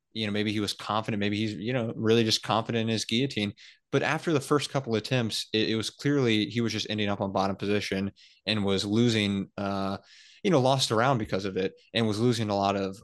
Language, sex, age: English, male, 20-39